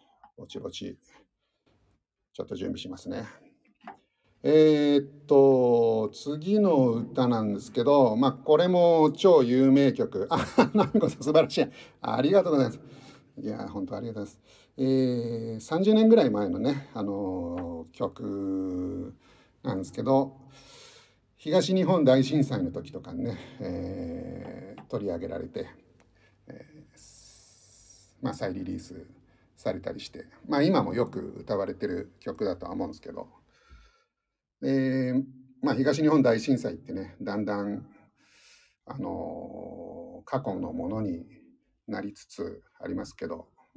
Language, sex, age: Japanese, male, 50-69